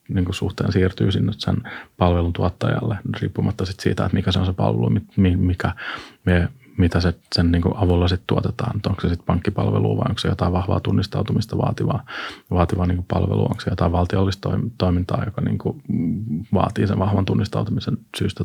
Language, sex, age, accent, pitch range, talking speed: Finnish, male, 30-49, native, 90-105 Hz, 155 wpm